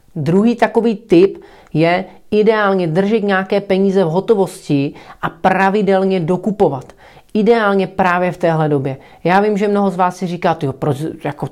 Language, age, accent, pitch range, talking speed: Czech, 30-49, native, 160-195 Hz, 155 wpm